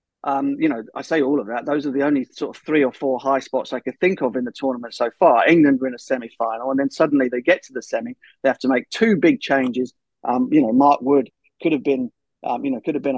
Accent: British